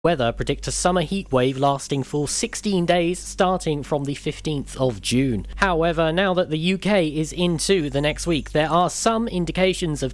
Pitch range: 130-175 Hz